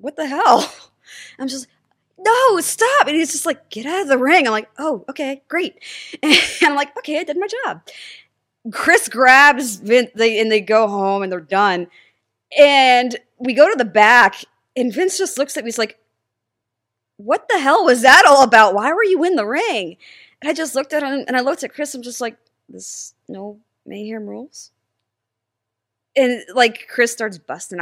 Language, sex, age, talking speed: English, female, 20-39, 200 wpm